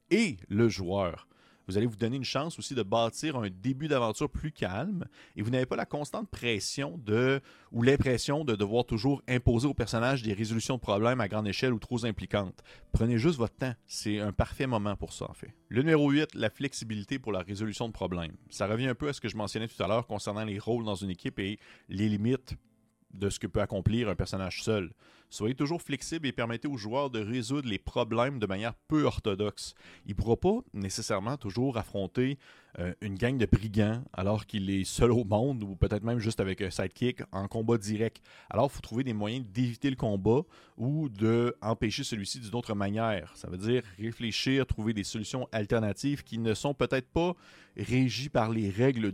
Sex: male